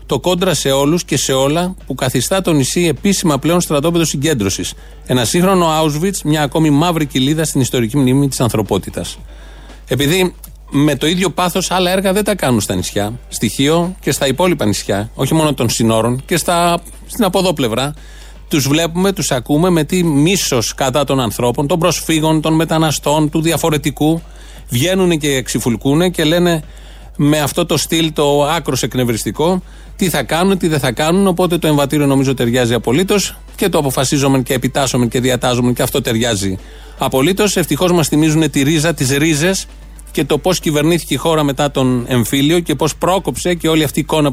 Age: 30-49